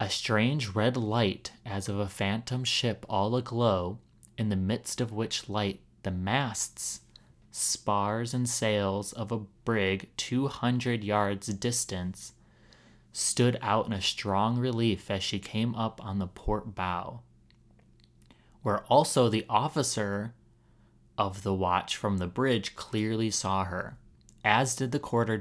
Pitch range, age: 100-115 Hz, 30-49